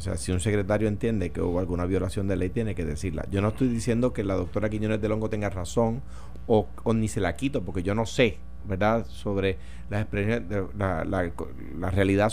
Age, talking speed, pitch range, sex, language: 30-49, 215 wpm, 95-130 Hz, male, Spanish